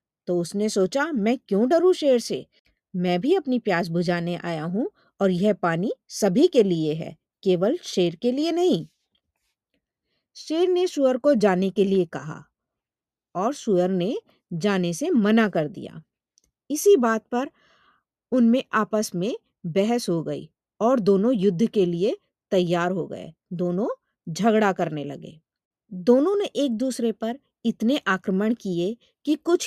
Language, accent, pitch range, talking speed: Hindi, native, 185-270 Hz, 115 wpm